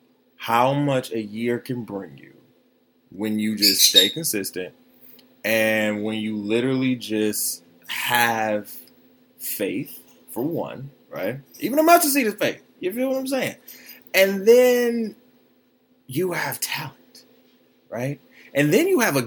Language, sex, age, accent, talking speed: English, male, 20-39, American, 135 wpm